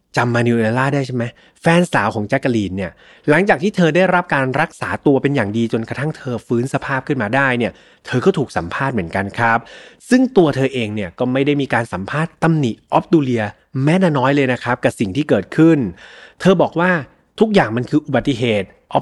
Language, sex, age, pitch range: Thai, male, 30-49, 120-165 Hz